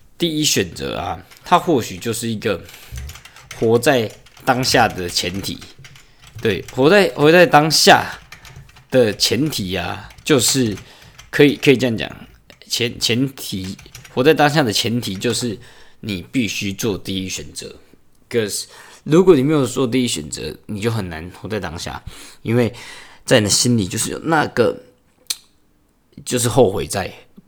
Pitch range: 95-130 Hz